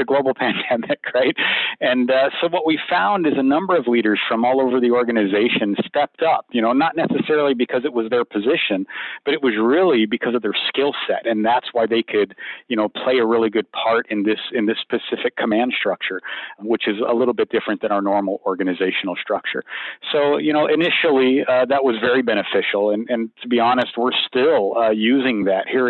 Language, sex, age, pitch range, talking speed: English, male, 40-59, 105-125 Hz, 205 wpm